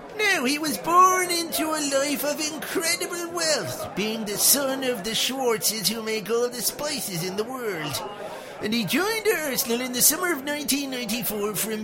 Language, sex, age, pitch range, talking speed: English, male, 50-69, 185-275 Hz, 170 wpm